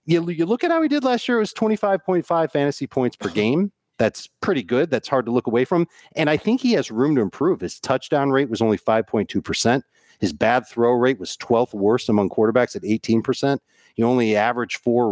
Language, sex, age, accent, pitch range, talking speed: English, male, 40-59, American, 115-150 Hz, 210 wpm